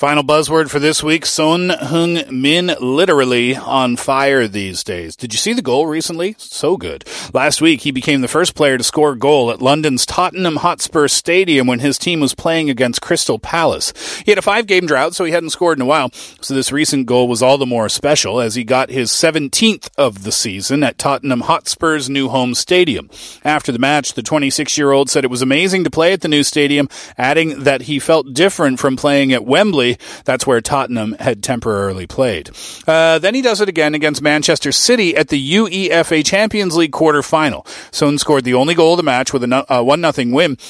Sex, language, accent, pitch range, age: male, Korean, American, 130-165 Hz, 30-49